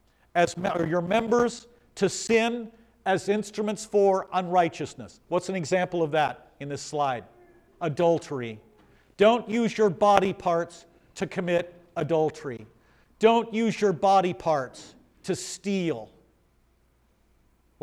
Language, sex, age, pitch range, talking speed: English, male, 50-69, 160-205 Hz, 115 wpm